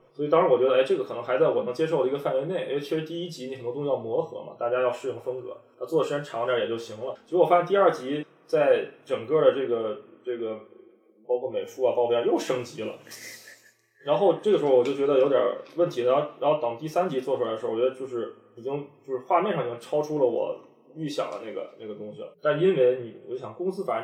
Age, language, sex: 20-39, Chinese, male